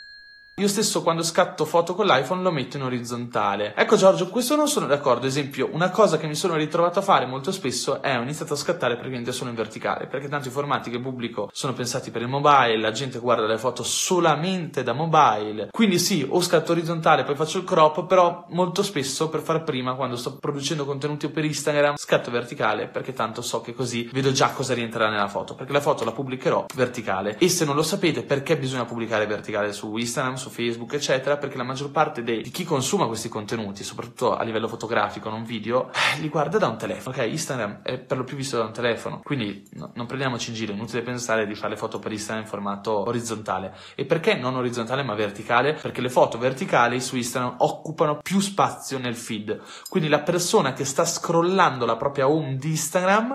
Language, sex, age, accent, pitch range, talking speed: Italian, male, 20-39, native, 115-160 Hz, 210 wpm